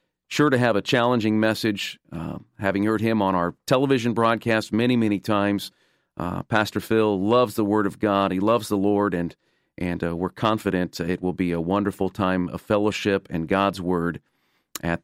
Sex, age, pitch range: male, 40-59, 95-115 Hz